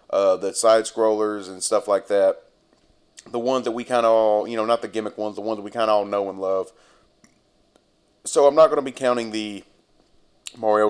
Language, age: English, 30-49